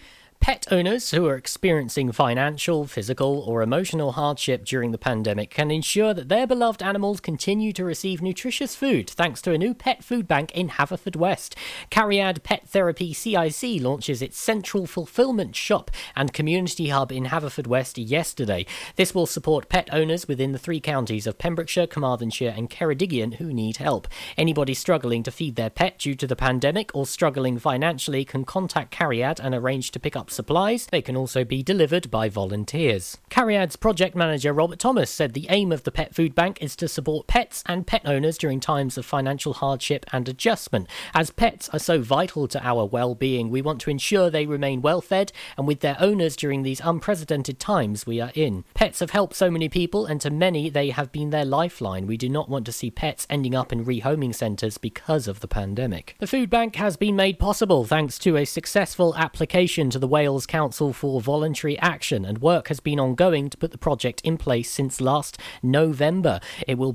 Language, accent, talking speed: English, British, 195 wpm